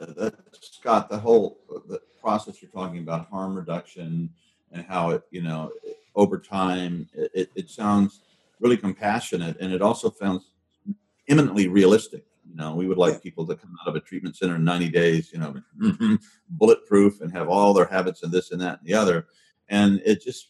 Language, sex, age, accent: English, male, 40-59, American